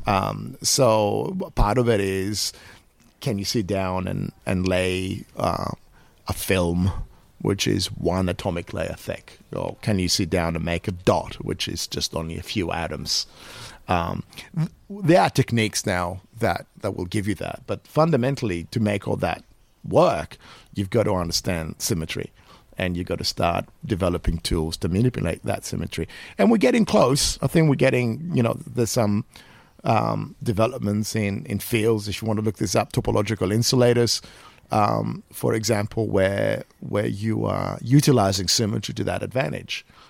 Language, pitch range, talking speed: English, 90-115 Hz, 165 wpm